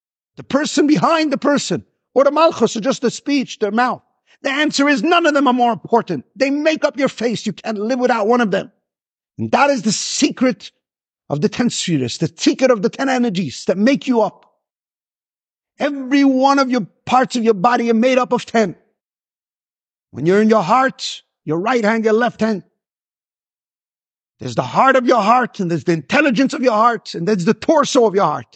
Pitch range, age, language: 215-275 Hz, 50-69, English